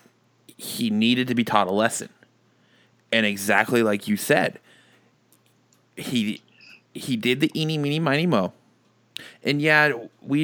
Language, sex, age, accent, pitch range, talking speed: English, male, 20-39, American, 105-125 Hz, 130 wpm